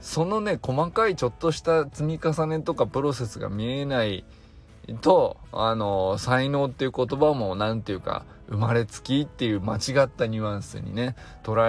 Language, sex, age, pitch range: Japanese, male, 20-39, 105-150 Hz